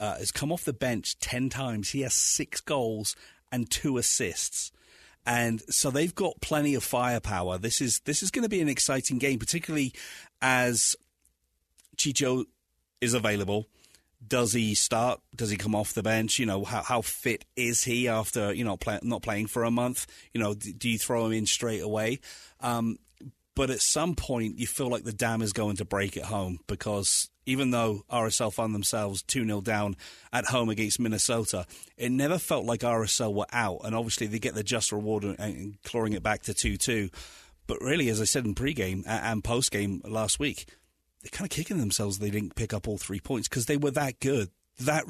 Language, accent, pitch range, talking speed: English, British, 105-125 Hz, 195 wpm